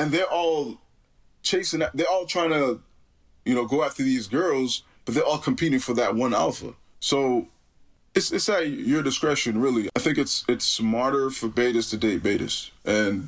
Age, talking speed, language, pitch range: 20-39, 180 wpm, English, 110-135 Hz